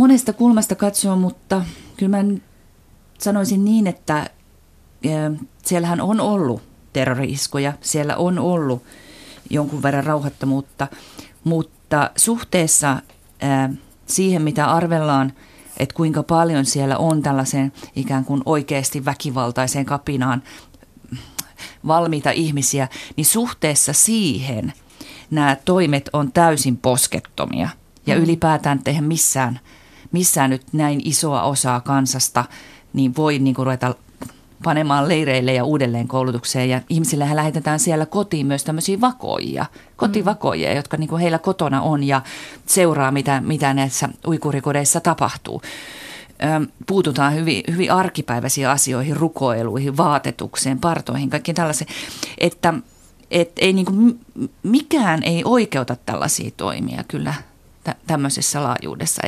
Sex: female